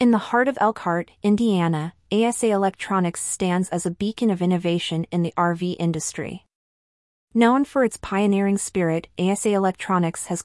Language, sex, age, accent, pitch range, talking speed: English, female, 30-49, American, 170-200 Hz, 150 wpm